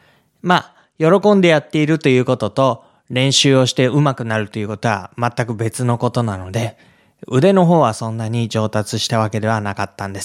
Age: 20-39